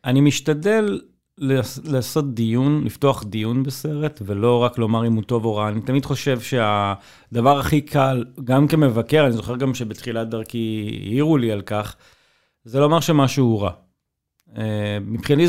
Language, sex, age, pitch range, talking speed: Hebrew, male, 30-49, 115-140 Hz, 150 wpm